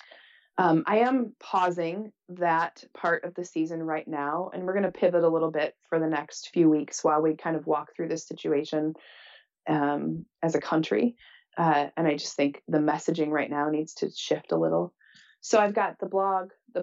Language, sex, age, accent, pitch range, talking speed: English, female, 30-49, American, 160-180 Hz, 200 wpm